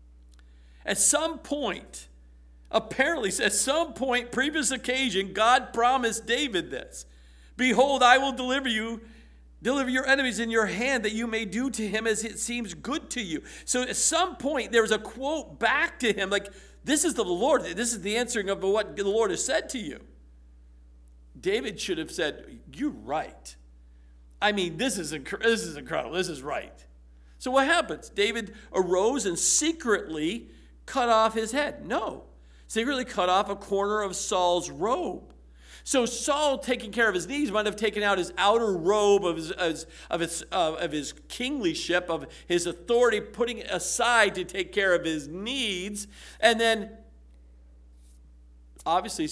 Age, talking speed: 50-69, 175 wpm